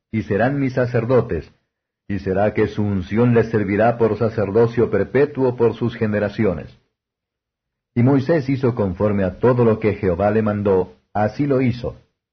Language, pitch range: Spanish, 105-120 Hz